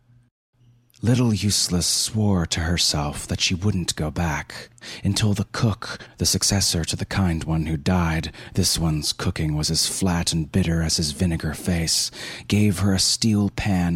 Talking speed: 155 wpm